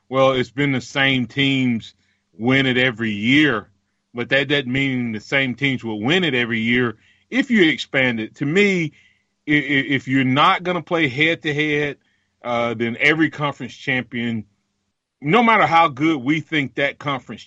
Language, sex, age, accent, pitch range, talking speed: English, male, 30-49, American, 120-160 Hz, 160 wpm